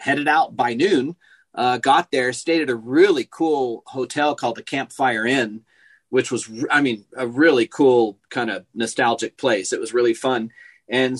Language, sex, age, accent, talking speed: English, male, 40-59, American, 175 wpm